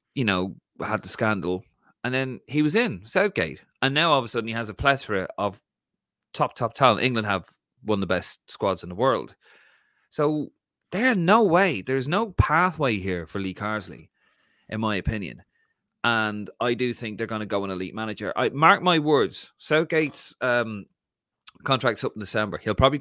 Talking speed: 190 wpm